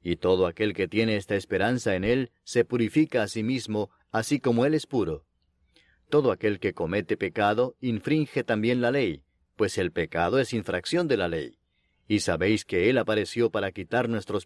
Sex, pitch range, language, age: male, 105-125 Hz, Spanish, 40-59